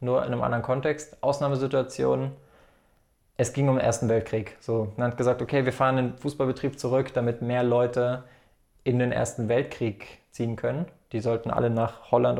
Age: 20-39